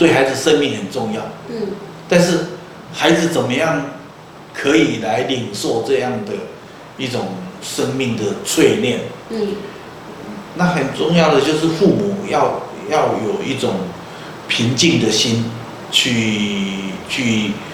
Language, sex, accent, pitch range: Chinese, male, native, 115-165 Hz